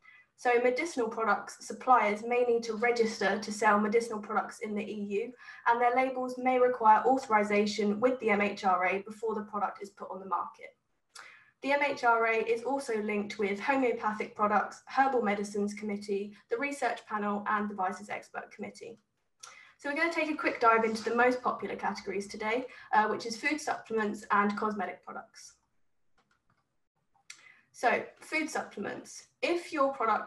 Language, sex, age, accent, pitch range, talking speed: English, female, 10-29, British, 210-260 Hz, 155 wpm